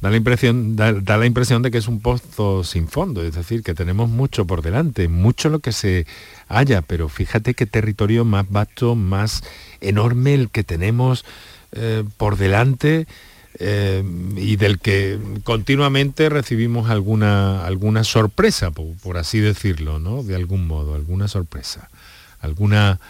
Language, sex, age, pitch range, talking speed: Spanish, male, 50-69, 90-115 Hz, 150 wpm